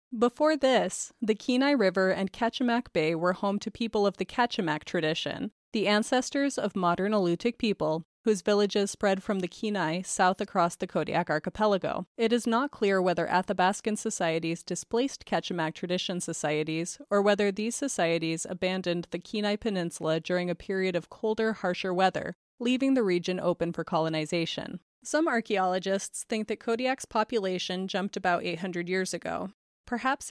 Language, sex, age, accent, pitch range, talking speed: English, female, 30-49, American, 180-225 Hz, 150 wpm